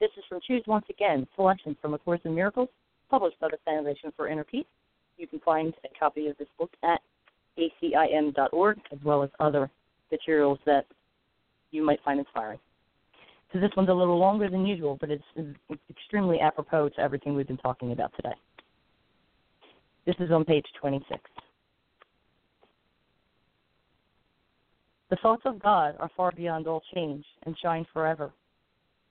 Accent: American